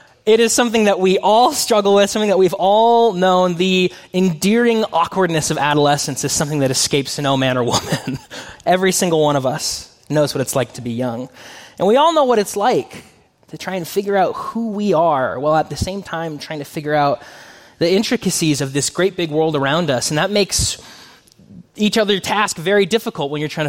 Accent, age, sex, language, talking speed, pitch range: American, 20-39, male, English, 210 wpm, 135-195 Hz